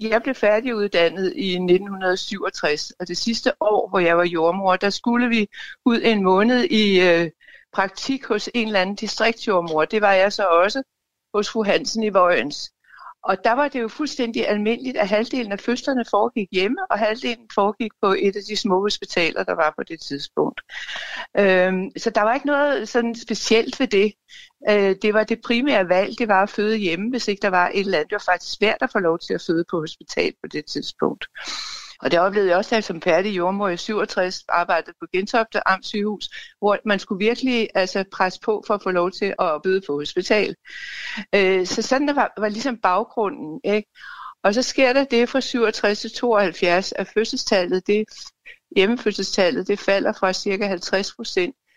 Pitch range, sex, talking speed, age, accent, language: 190-230 Hz, female, 190 wpm, 60-79, native, Danish